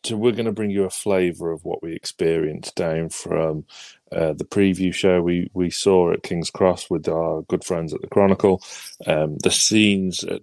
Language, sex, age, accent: English, male, 30-49, British